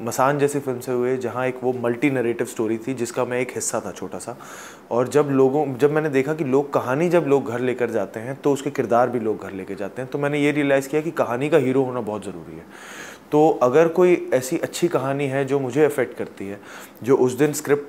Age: 20-39